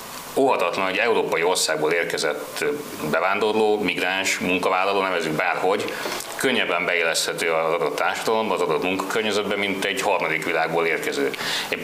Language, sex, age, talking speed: Hungarian, male, 30-49, 120 wpm